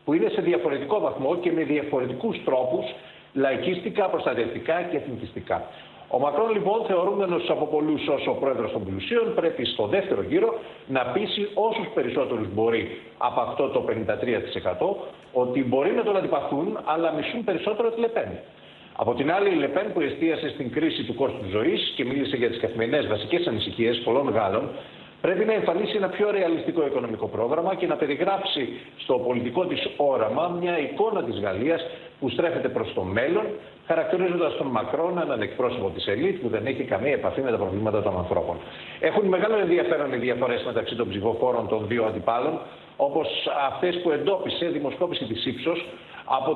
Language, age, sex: Greek, 50-69, male